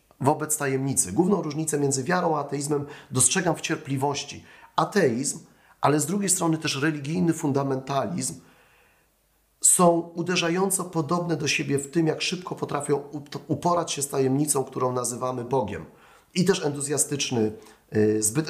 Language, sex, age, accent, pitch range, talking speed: Polish, male, 30-49, native, 135-165 Hz, 125 wpm